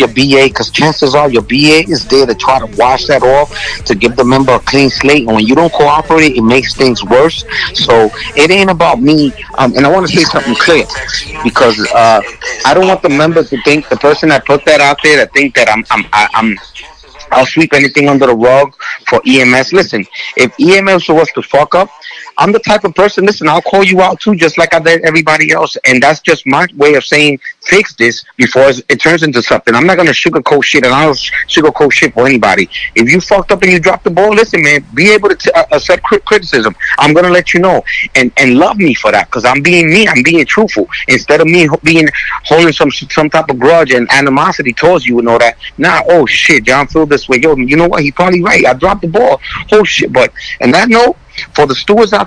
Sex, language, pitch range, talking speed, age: male, English, 140-185 Hz, 235 wpm, 30-49